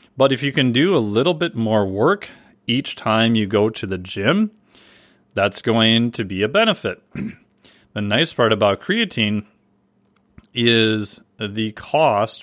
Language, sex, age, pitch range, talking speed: English, male, 30-49, 105-125 Hz, 150 wpm